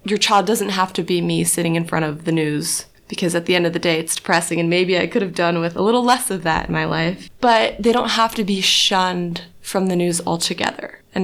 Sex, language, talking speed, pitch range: female, English, 260 wpm, 180-225 Hz